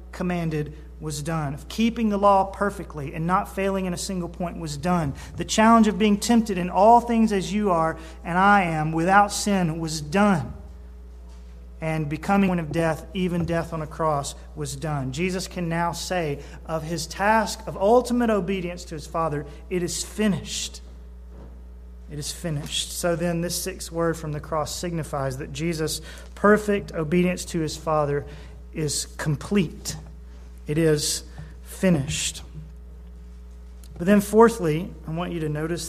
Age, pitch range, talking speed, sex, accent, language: 30-49, 135-180 Hz, 160 wpm, male, American, English